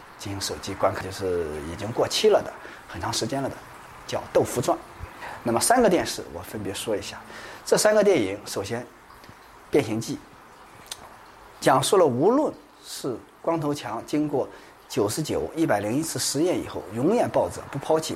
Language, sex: Chinese, male